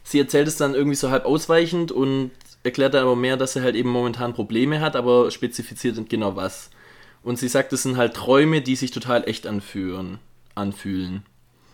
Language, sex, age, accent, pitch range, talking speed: German, male, 20-39, German, 115-135 Hz, 180 wpm